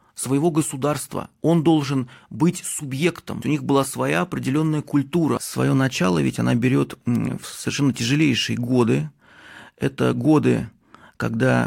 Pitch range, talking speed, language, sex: 120-150 Hz, 125 wpm, Russian, male